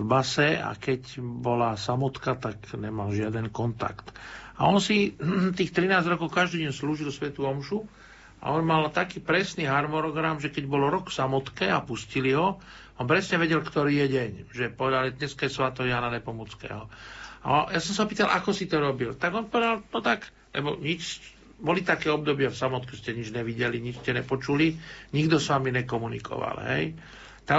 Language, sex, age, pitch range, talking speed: Slovak, male, 60-79, 125-155 Hz, 175 wpm